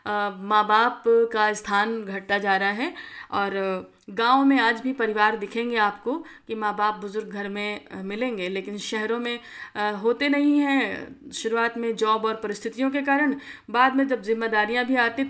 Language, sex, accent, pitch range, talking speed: Hindi, female, native, 210-255 Hz, 165 wpm